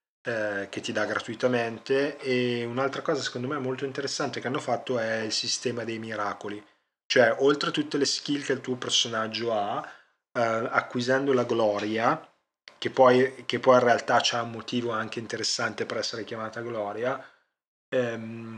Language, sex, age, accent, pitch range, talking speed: Italian, male, 30-49, native, 110-125 Hz, 160 wpm